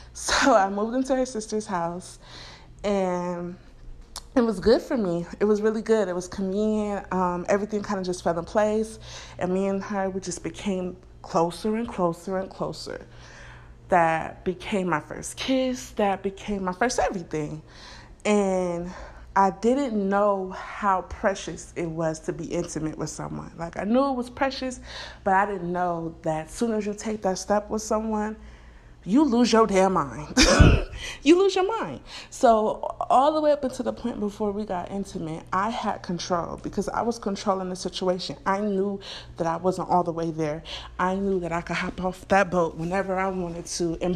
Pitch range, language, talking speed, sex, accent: 170-215 Hz, English, 185 wpm, female, American